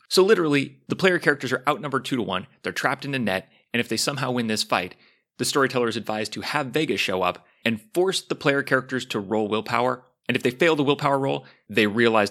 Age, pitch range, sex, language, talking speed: 30-49, 105-140 Hz, male, English, 235 wpm